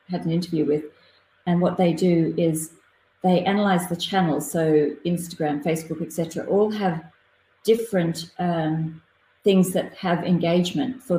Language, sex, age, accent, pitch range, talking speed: English, female, 40-59, Australian, 160-180 Hz, 140 wpm